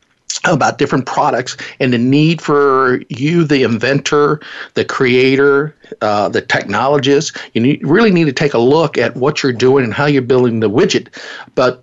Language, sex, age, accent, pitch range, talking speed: English, male, 50-69, American, 130-155 Hz, 170 wpm